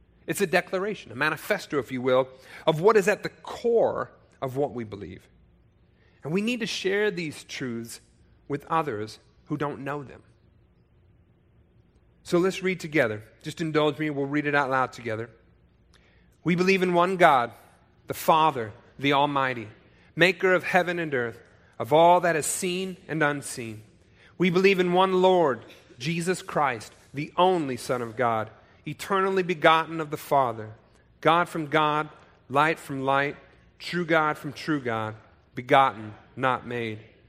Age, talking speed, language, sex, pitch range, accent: 40-59, 155 wpm, English, male, 115-175 Hz, American